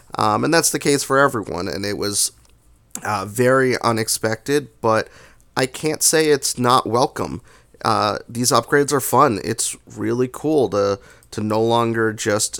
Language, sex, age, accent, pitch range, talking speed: English, male, 30-49, American, 100-125 Hz, 155 wpm